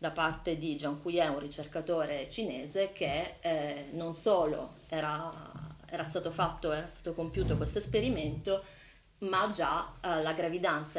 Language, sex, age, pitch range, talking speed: Italian, female, 30-49, 155-175 Hz, 140 wpm